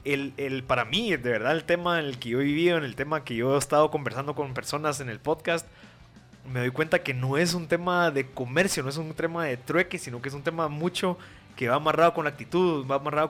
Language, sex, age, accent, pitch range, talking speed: Spanish, male, 20-39, Mexican, 135-165 Hz, 255 wpm